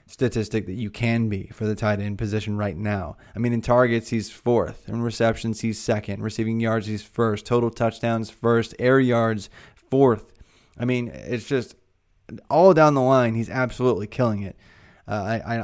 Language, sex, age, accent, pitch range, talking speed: English, male, 20-39, American, 105-120 Hz, 175 wpm